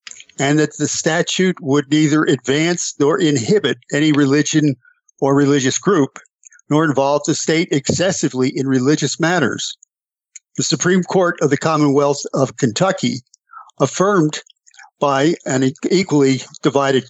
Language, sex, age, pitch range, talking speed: English, male, 50-69, 140-170 Hz, 125 wpm